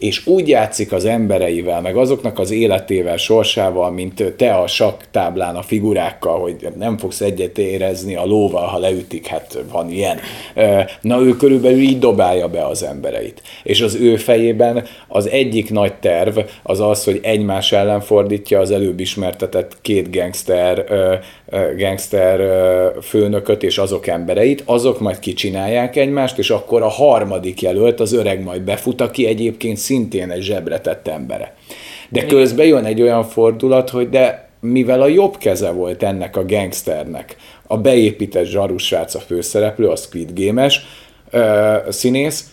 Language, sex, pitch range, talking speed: Hungarian, male, 95-125 Hz, 145 wpm